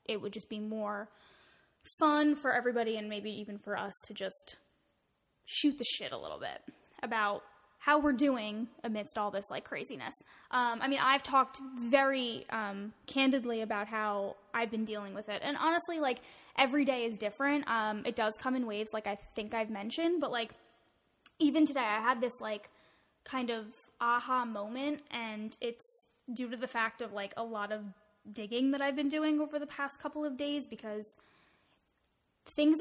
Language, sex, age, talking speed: English, female, 10-29, 180 wpm